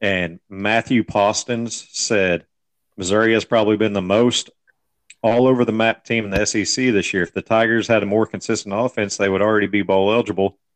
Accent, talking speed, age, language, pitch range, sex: American, 165 wpm, 40-59, English, 100-120 Hz, male